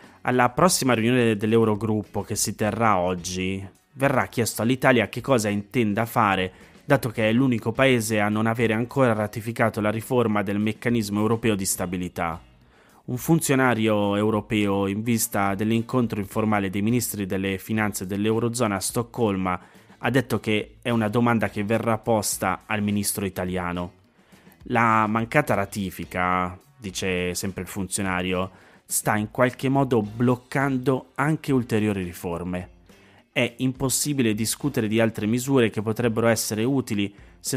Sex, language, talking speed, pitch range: male, Italian, 135 wpm, 100-120 Hz